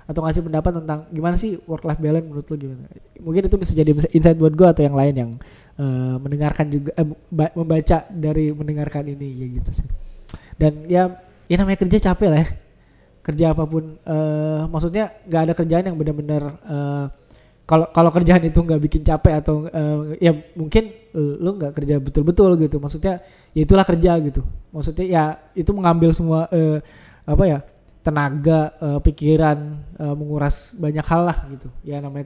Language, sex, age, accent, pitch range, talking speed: Indonesian, male, 20-39, native, 150-175 Hz, 180 wpm